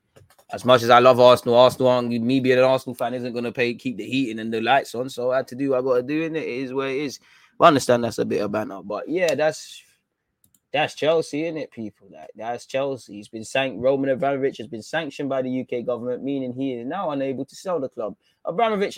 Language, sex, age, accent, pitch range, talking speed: English, male, 20-39, British, 115-140 Hz, 255 wpm